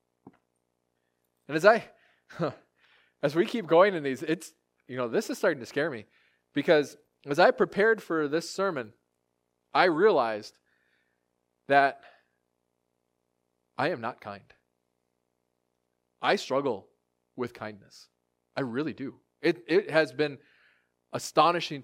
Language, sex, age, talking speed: English, male, 20-39, 125 wpm